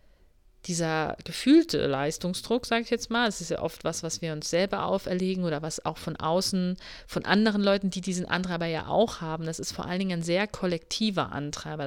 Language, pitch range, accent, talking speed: German, 160-200 Hz, German, 200 wpm